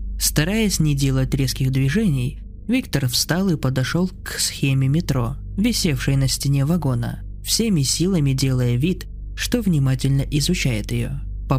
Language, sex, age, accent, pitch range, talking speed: Russian, male, 20-39, native, 130-165 Hz, 130 wpm